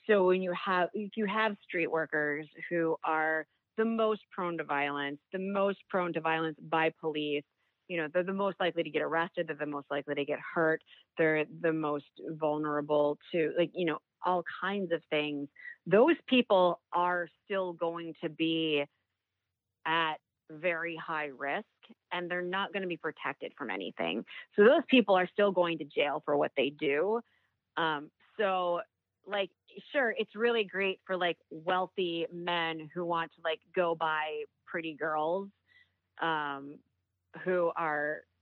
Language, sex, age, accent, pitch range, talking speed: English, female, 30-49, American, 150-185 Hz, 165 wpm